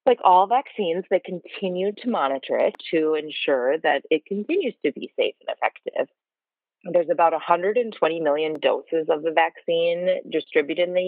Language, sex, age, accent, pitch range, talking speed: English, female, 30-49, American, 150-210 Hz, 155 wpm